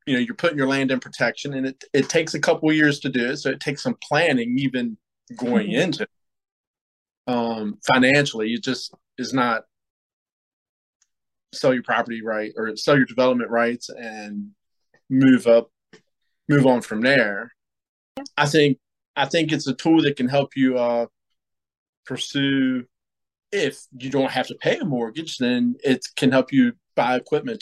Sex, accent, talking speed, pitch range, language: male, American, 170 wpm, 120-150 Hz, English